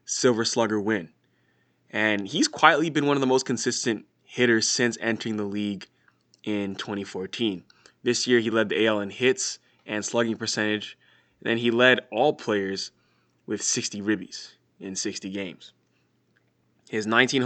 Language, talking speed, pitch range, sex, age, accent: English, 150 wpm, 105-125 Hz, male, 20-39, American